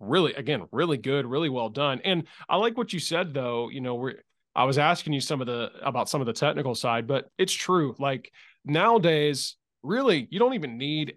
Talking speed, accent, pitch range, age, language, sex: 215 wpm, American, 120-145 Hz, 20-39, English, male